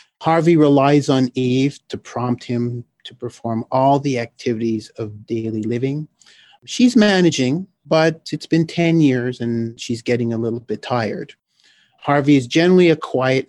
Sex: male